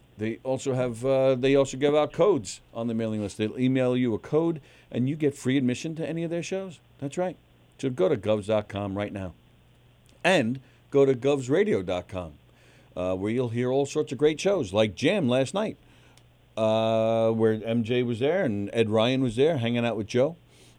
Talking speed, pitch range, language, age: 190 wpm, 115-155 Hz, English, 50-69